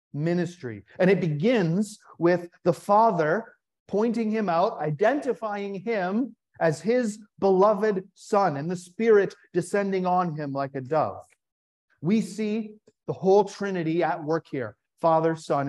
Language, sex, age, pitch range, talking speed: English, male, 40-59, 170-220 Hz, 135 wpm